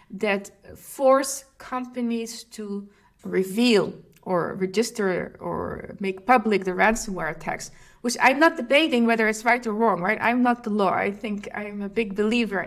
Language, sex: English, female